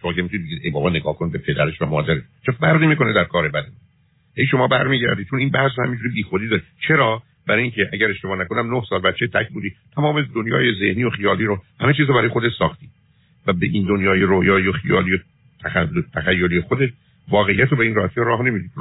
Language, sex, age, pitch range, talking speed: Persian, male, 50-69, 90-125 Hz, 200 wpm